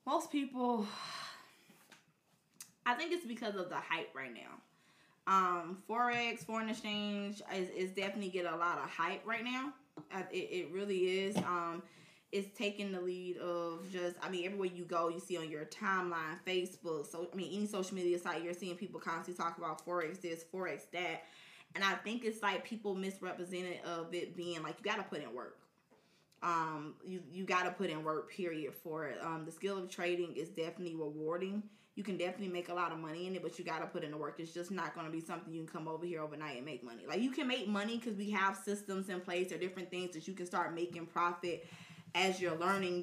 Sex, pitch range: female, 170-200 Hz